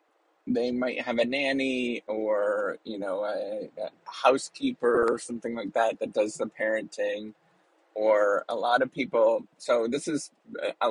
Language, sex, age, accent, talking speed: English, male, 30-49, American, 155 wpm